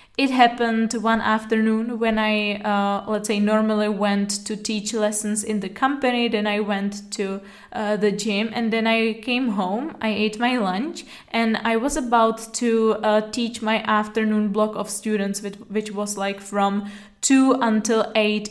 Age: 10-29